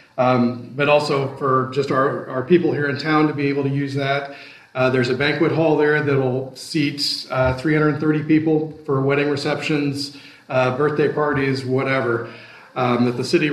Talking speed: 170 wpm